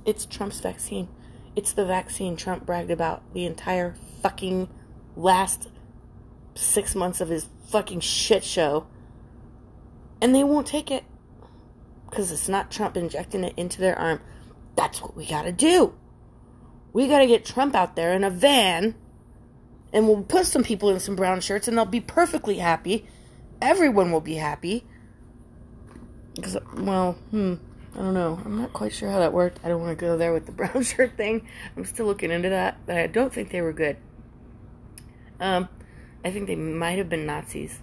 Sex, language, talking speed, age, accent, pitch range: female, English, 175 wpm, 30-49, American, 145-205 Hz